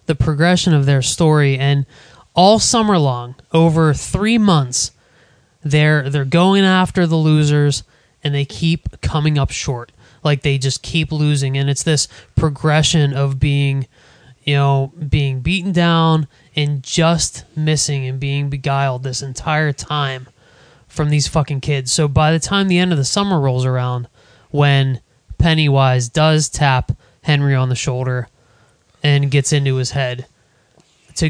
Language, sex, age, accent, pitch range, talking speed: English, male, 20-39, American, 135-170 Hz, 150 wpm